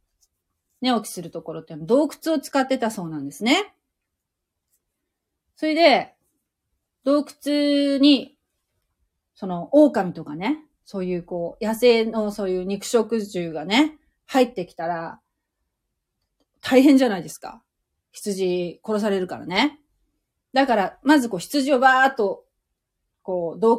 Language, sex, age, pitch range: Japanese, female, 30-49, 175-260 Hz